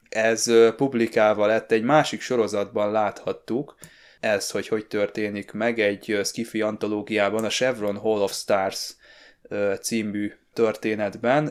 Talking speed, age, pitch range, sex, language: 115 wpm, 20-39, 105-115 Hz, male, Hungarian